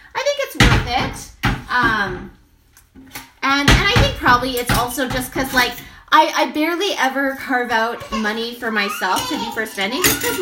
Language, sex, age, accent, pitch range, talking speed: English, female, 20-39, American, 250-340 Hz, 175 wpm